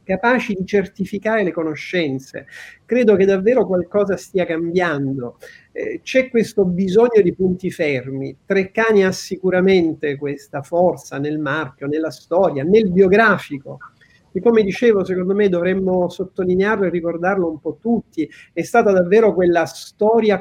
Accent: native